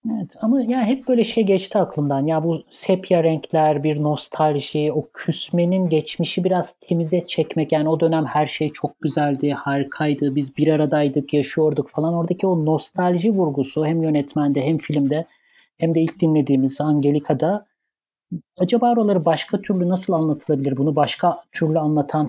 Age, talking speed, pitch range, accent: 30-49, 150 wpm, 145-175 Hz, native